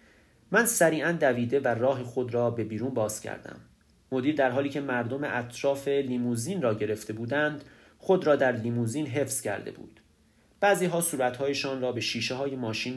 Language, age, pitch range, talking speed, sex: Persian, 30-49, 115-150 Hz, 160 wpm, male